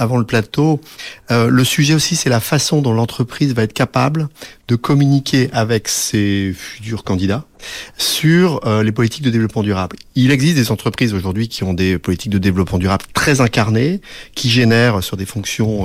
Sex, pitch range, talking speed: male, 110-145 Hz, 180 wpm